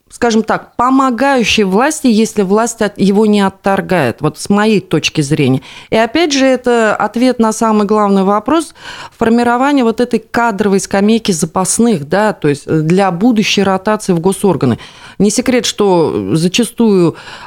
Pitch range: 185-235 Hz